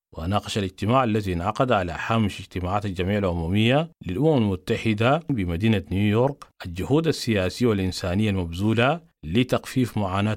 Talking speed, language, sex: 110 wpm, English, male